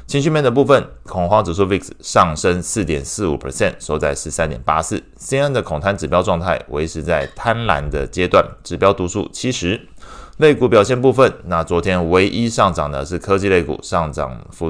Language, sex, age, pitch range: Chinese, male, 20-39, 80-105 Hz